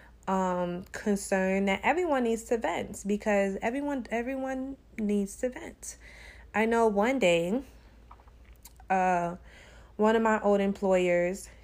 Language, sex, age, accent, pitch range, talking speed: English, female, 20-39, American, 180-230 Hz, 120 wpm